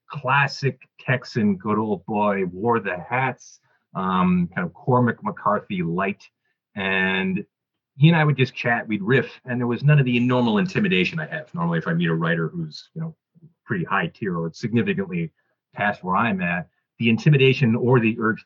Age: 30-49